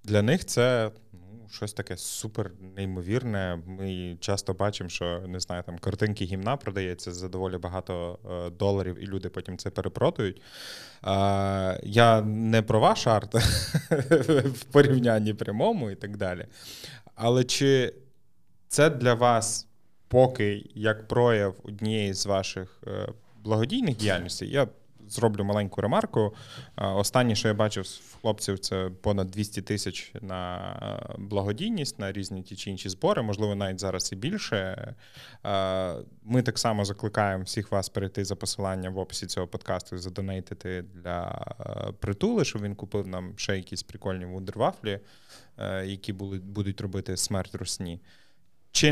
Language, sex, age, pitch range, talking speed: Ukrainian, male, 20-39, 95-115 Hz, 135 wpm